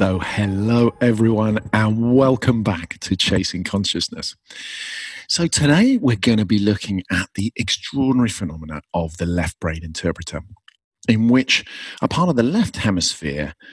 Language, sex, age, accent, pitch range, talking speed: English, male, 40-59, British, 85-115 Hz, 145 wpm